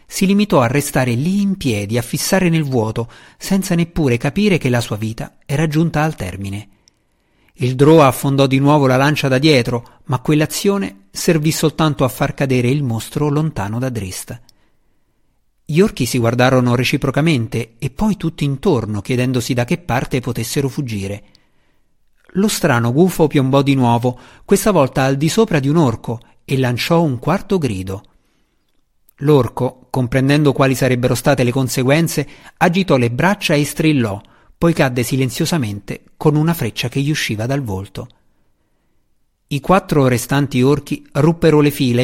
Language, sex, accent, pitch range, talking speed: Italian, male, native, 125-155 Hz, 155 wpm